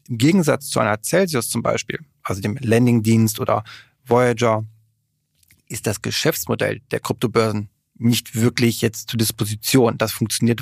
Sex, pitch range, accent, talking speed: male, 110-130 Hz, German, 135 wpm